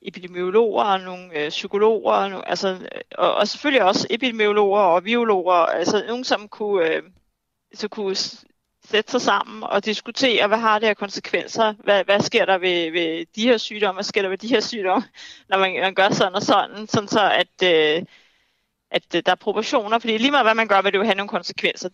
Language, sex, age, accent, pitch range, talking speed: Danish, female, 30-49, native, 185-225 Hz, 210 wpm